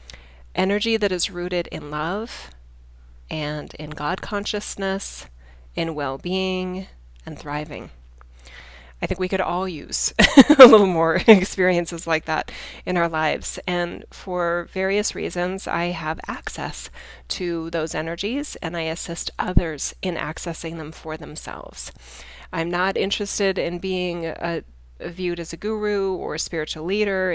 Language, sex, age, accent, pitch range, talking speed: English, female, 30-49, American, 155-190 Hz, 135 wpm